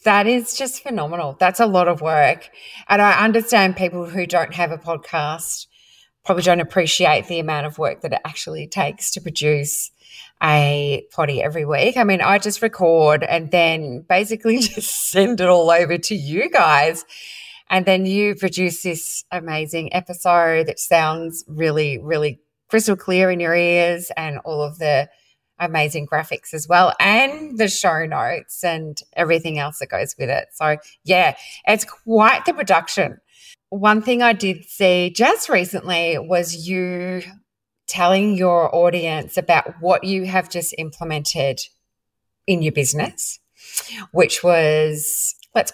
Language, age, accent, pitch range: English, 30-49, Australian, 155-195 Hz